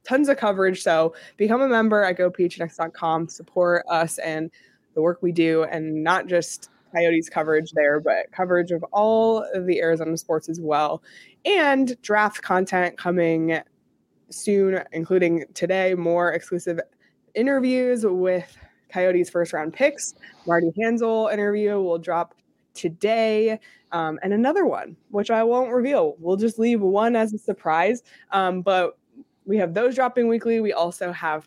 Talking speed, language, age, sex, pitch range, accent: 150 wpm, English, 20-39, female, 170-220 Hz, American